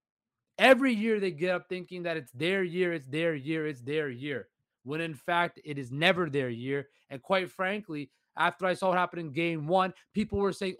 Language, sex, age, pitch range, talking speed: English, male, 30-49, 150-200 Hz, 210 wpm